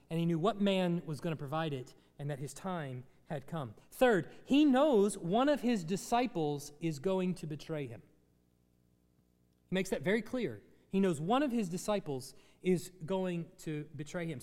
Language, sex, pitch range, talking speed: English, male, 150-215 Hz, 185 wpm